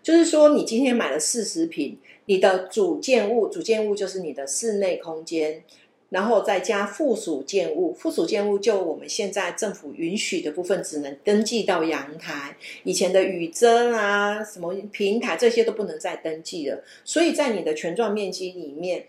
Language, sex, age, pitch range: Chinese, female, 50-69, 175-255 Hz